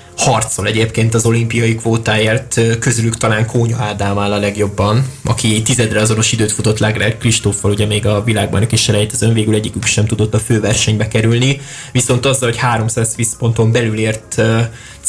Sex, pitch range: male, 105-115 Hz